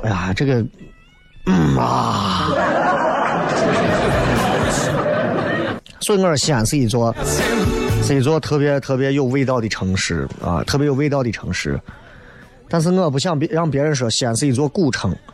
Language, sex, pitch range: Chinese, male, 120-175 Hz